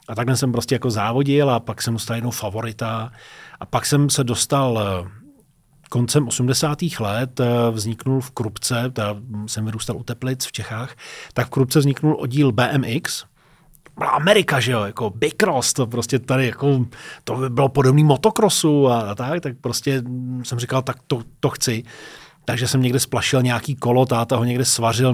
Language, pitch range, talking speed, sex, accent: Czech, 115-135 Hz, 165 wpm, male, native